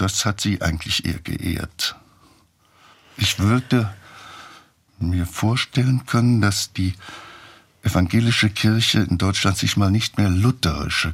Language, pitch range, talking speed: German, 90-110 Hz, 120 wpm